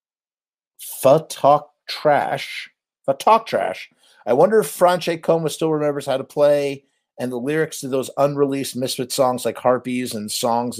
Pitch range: 120-170 Hz